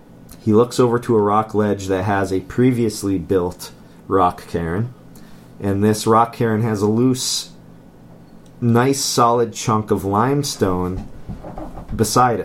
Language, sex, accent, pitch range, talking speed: English, male, American, 95-115 Hz, 130 wpm